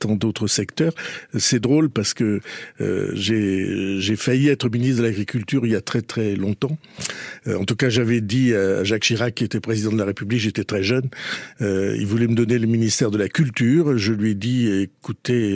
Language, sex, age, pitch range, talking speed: French, male, 60-79, 110-135 Hz, 210 wpm